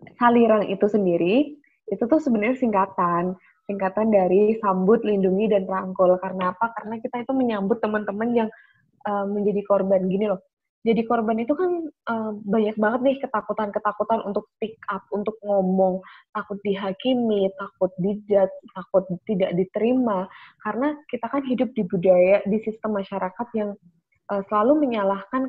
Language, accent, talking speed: Indonesian, native, 140 wpm